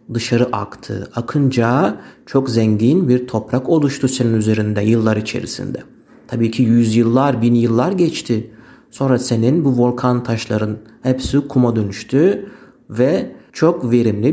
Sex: male